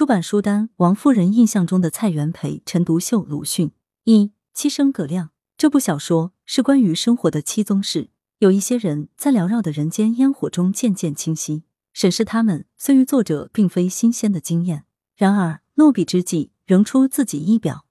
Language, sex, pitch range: Chinese, female, 165-230 Hz